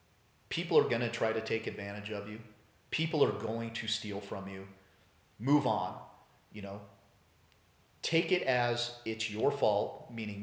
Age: 40-59